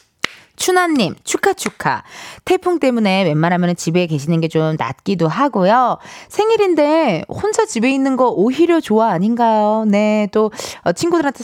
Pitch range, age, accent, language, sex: 195-285 Hz, 20-39, native, Korean, female